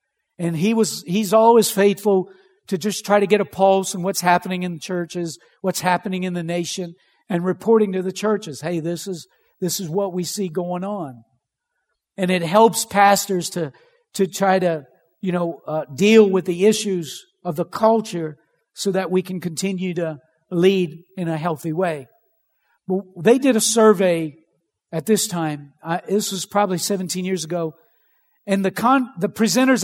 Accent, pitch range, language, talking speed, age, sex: American, 180-225 Hz, English, 175 wpm, 50-69, male